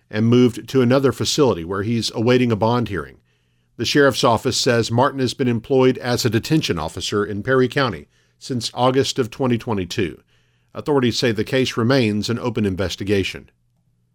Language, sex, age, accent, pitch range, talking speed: English, male, 50-69, American, 100-140 Hz, 160 wpm